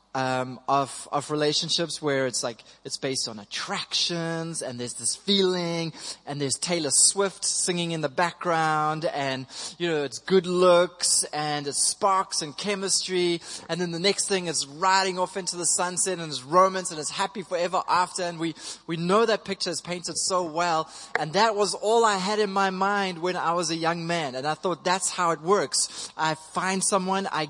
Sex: male